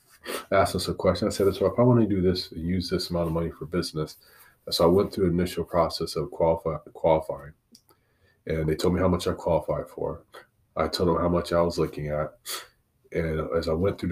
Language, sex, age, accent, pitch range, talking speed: English, male, 30-49, American, 80-90 Hz, 225 wpm